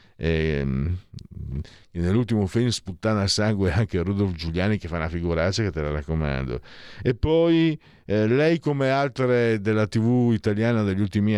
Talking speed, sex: 150 wpm, male